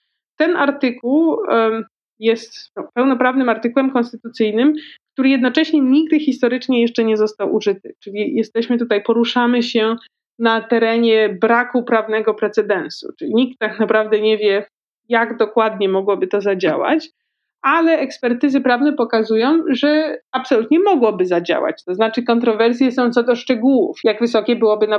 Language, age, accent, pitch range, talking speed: Polish, 20-39, native, 220-270 Hz, 130 wpm